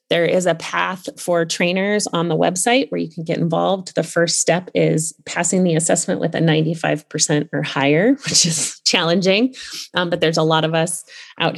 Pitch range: 160-180 Hz